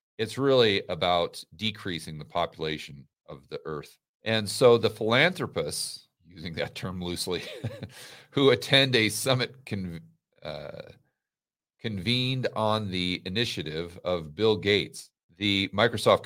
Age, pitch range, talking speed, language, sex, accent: 40-59, 95-115 Hz, 115 wpm, English, male, American